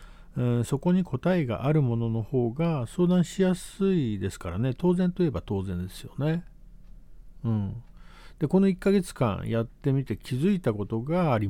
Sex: male